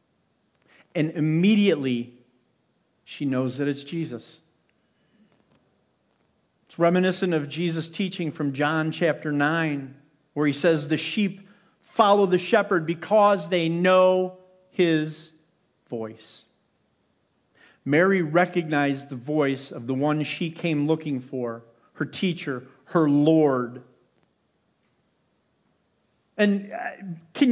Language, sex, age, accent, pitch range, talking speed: English, male, 50-69, American, 160-240 Hz, 100 wpm